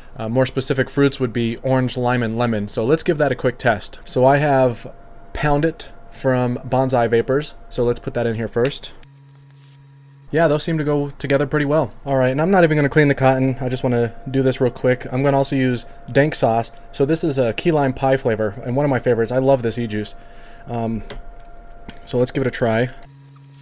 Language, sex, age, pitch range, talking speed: English, male, 20-39, 120-140 Hz, 225 wpm